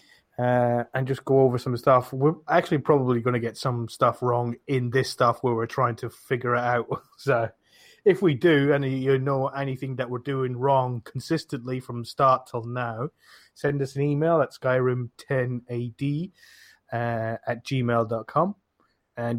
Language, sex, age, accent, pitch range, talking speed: English, male, 20-39, British, 120-135 Hz, 160 wpm